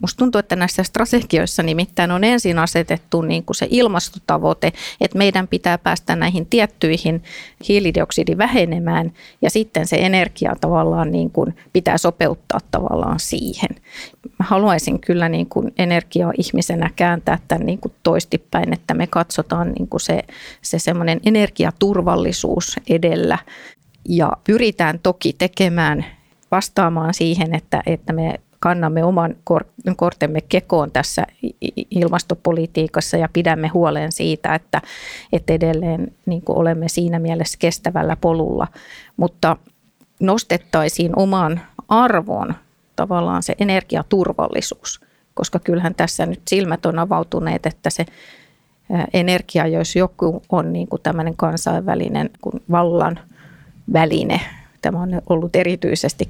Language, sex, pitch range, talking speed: Finnish, female, 165-185 Hz, 115 wpm